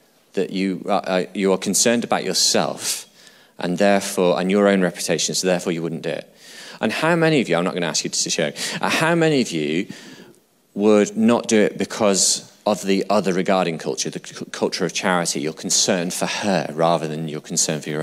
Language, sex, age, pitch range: English, male, 30-49, 85-110 Hz